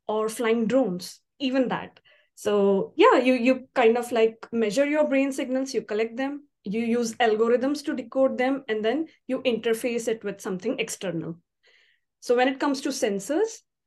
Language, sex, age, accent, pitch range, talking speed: English, female, 20-39, Indian, 220-270 Hz, 170 wpm